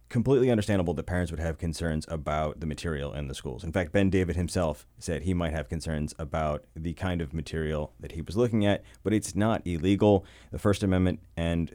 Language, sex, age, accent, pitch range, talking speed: English, male, 30-49, American, 80-100 Hz, 210 wpm